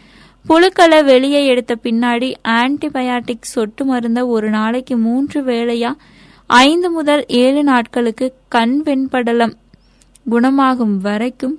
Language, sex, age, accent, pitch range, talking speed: Tamil, female, 20-39, native, 230-280 Hz, 100 wpm